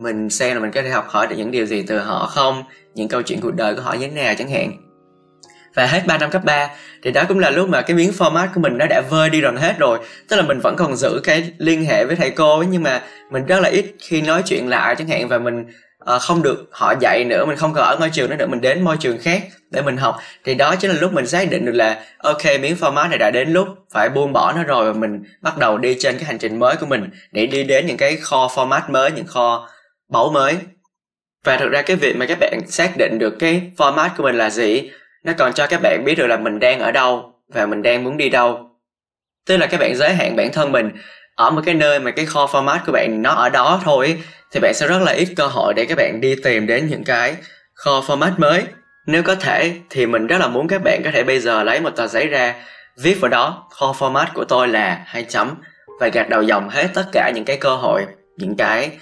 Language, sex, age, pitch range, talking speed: Vietnamese, male, 20-39, 125-180 Hz, 270 wpm